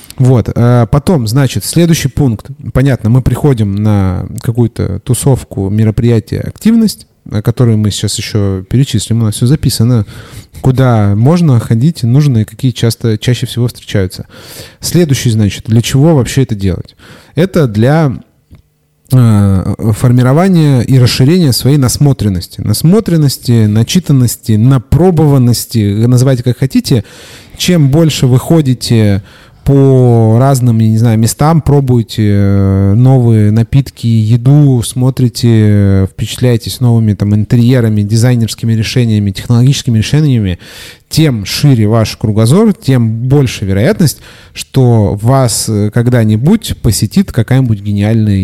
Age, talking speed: 30-49, 105 wpm